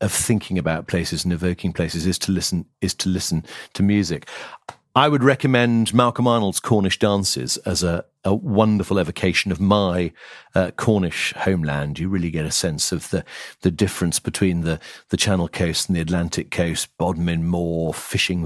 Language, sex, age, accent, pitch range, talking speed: English, male, 40-59, British, 90-110 Hz, 170 wpm